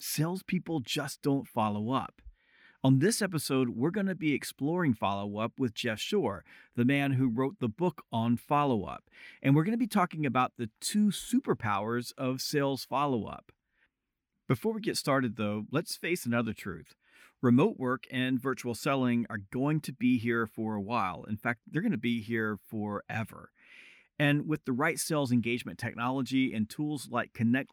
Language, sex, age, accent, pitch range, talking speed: English, male, 40-59, American, 120-155 Hz, 170 wpm